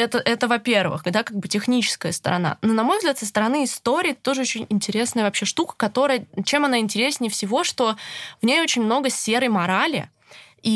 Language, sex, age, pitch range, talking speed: Russian, female, 20-39, 205-245 Hz, 185 wpm